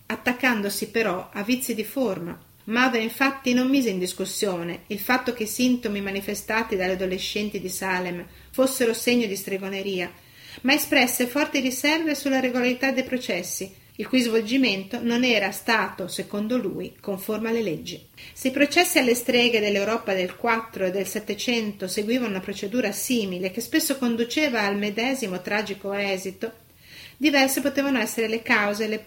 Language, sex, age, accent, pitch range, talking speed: Italian, female, 40-59, native, 200-245 Hz, 155 wpm